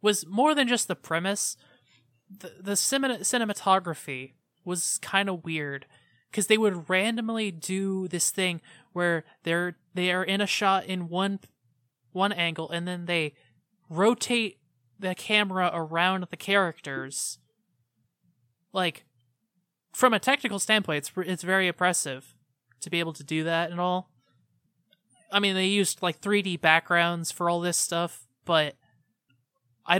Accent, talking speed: American, 140 wpm